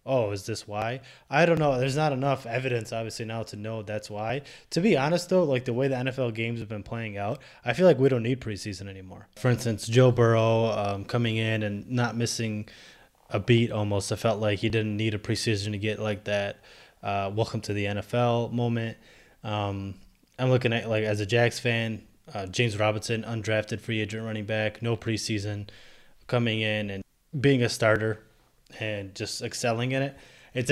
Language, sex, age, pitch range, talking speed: English, male, 20-39, 105-125 Hz, 195 wpm